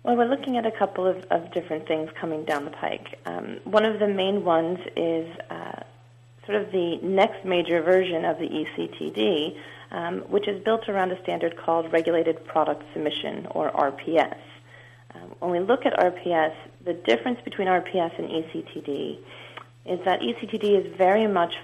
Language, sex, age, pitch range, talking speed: English, female, 40-59, 160-200 Hz, 170 wpm